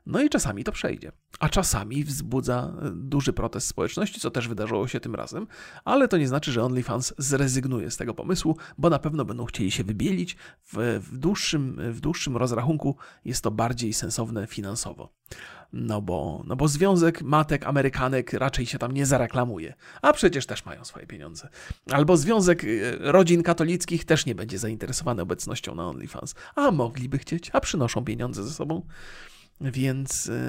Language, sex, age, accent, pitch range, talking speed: Polish, male, 40-59, native, 115-155 Hz, 155 wpm